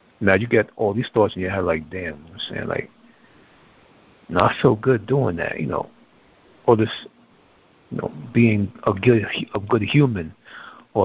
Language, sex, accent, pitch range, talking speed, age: English, male, American, 115-140 Hz, 190 wpm, 60-79